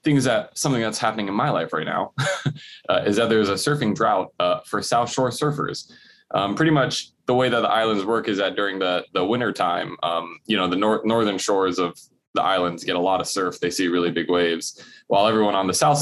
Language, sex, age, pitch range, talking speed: English, male, 20-39, 90-120 Hz, 235 wpm